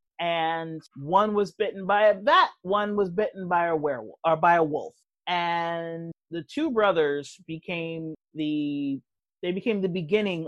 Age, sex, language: 30-49, male, English